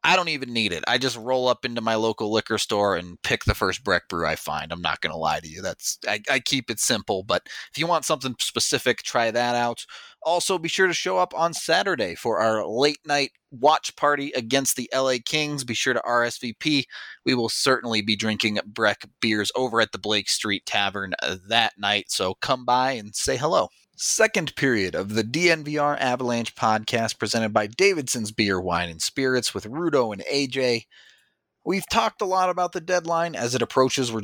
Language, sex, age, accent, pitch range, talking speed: English, male, 30-49, American, 110-145 Hz, 205 wpm